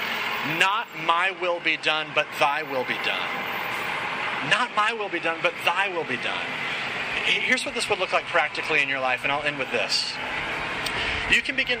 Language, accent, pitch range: English, American, 145-180 Hz